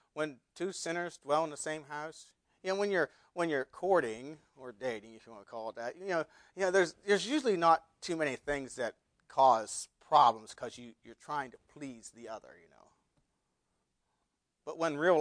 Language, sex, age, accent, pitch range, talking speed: English, male, 40-59, American, 145-210 Hz, 200 wpm